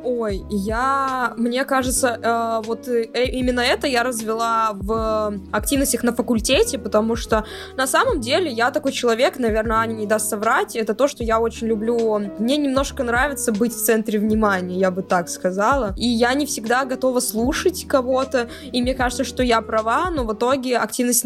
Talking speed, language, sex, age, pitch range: 170 wpm, Russian, female, 20-39, 220-260 Hz